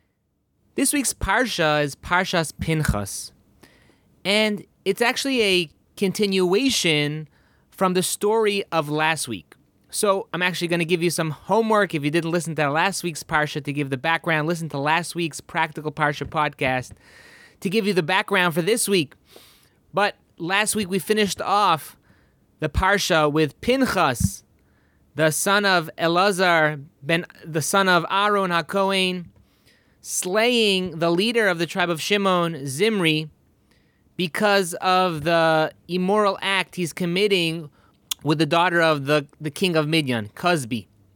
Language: English